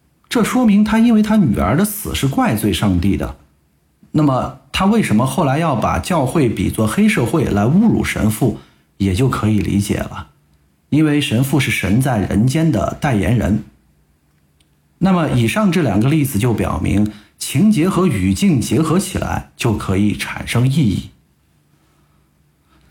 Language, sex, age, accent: Chinese, male, 50-69, native